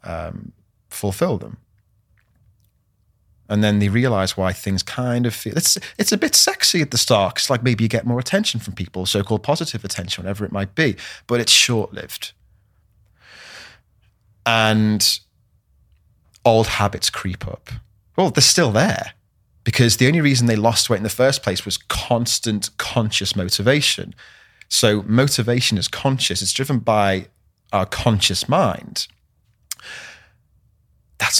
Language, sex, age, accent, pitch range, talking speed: English, male, 30-49, British, 95-115 Hz, 140 wpm